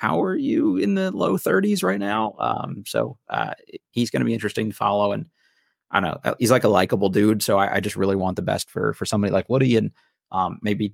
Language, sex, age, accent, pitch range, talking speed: English, male, 30-49, American, 95-110 Hz, 240 wpm